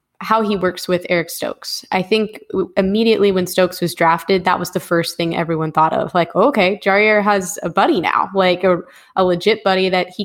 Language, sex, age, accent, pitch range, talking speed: English, female, 10-29, American, 175-205 Hz, 205 wpm